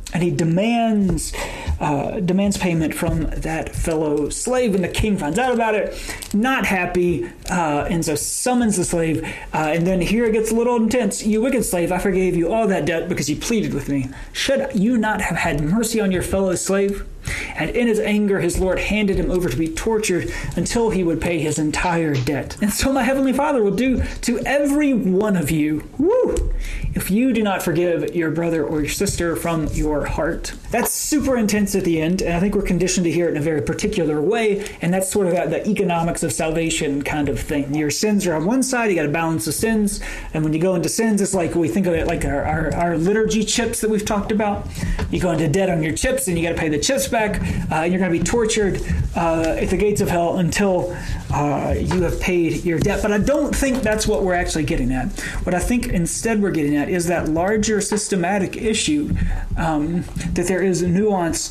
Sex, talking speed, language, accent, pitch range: male, 220 wpm, English, American, 160-210 Hz